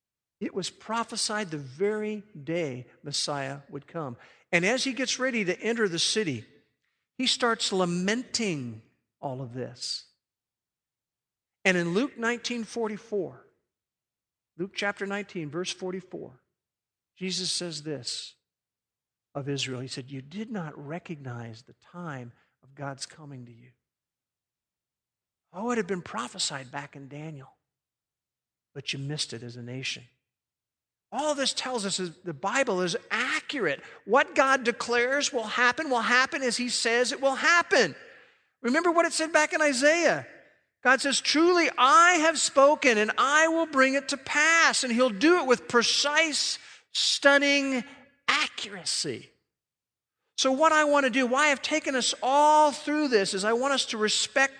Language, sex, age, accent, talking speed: English, male, 50-69, American, 145 wpm